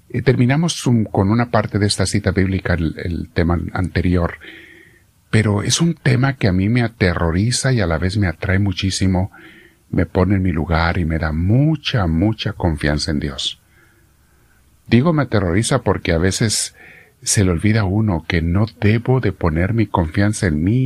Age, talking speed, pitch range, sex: 50-69, 175 wpm, 90-115 Hz, male